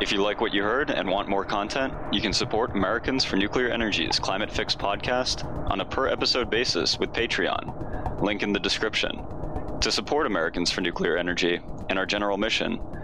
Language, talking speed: English, 190 wpm